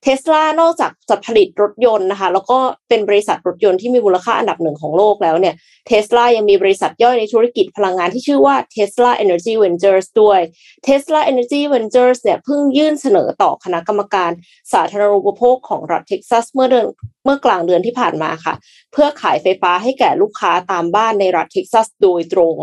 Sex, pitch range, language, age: female, 180-250 Hz, Thai, 20-39